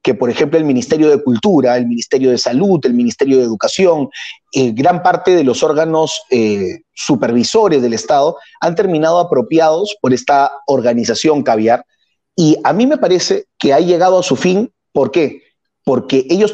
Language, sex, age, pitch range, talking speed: Spanish, male, 30-49, 135-185 Hz, 170 wpm